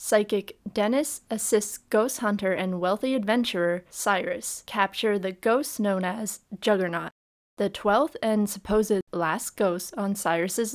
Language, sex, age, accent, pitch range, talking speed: English, female, 20-39, American, 195-230 Hz, 130 wpm